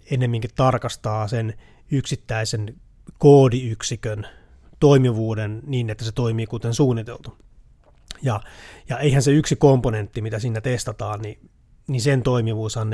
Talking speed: 115 wpm